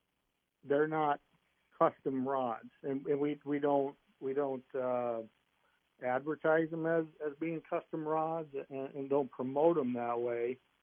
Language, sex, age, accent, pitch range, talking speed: English, male, 60-79, American, 125-145 Hz, 145 wpm